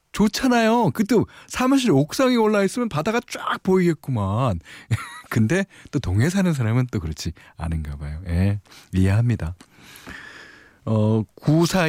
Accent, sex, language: native, male, Korean